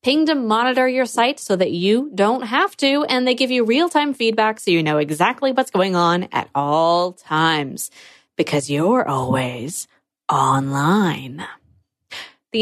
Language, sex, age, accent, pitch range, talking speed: English, female, 20-39, American, 185-270 Hz, 145 wpm